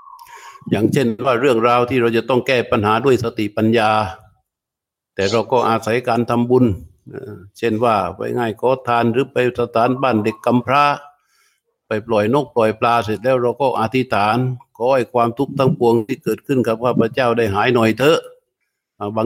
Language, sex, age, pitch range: Thai, male, 60-79, 110-125 Hz